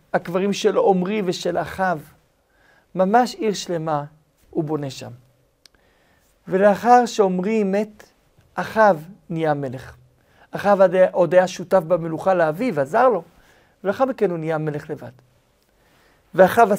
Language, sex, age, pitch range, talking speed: Hebrew, male, 50-69, 155-205 Hz, 115 wpm